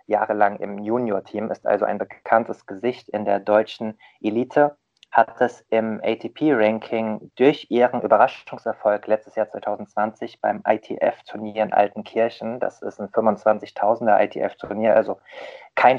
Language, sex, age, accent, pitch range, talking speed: German, male, 20-39, German, 105-120 Hz, 120 wpm